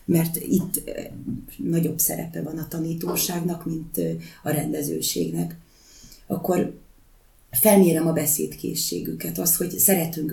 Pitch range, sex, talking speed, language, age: 150-180 Hz, female, 100 wpm, Hungarian, 30-49